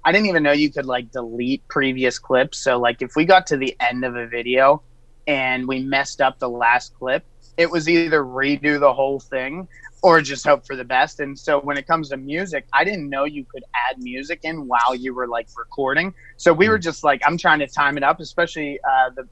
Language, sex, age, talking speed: English, male, 30-49, 230 wpm